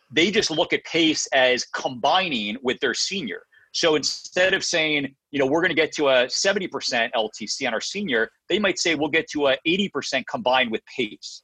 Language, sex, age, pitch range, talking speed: English, male, 40-59, 120-170 Hz, 200 wpm